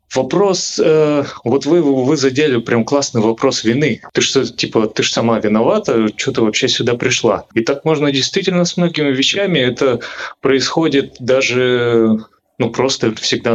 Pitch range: 115-155 Hz